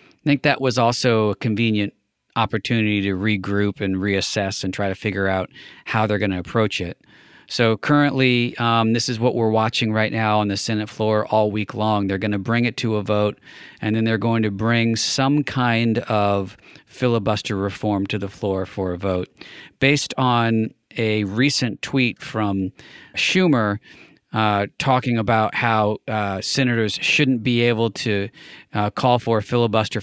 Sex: male